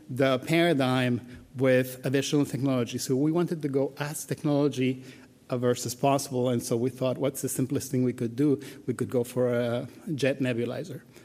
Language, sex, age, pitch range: English, male, 50-69, 125-145 Hz